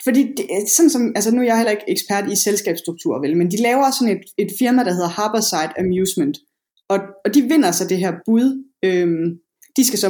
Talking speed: 225 wpm